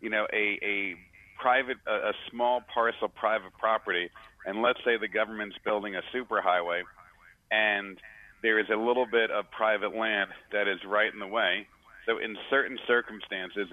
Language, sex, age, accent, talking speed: English, male, 50-69, American, 165 wpm